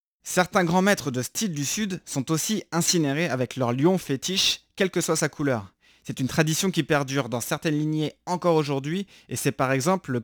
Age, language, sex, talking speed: 20-39, French, male, 200 wpm